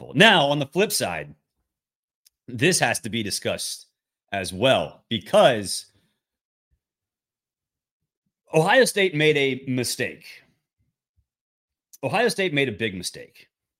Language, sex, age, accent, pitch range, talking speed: English, male, 30-49, American, 110-160 Hz, 105 wpm